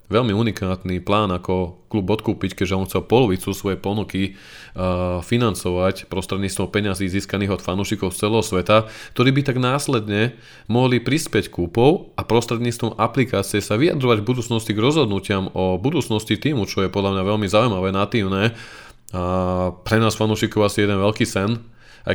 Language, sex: Slovak, male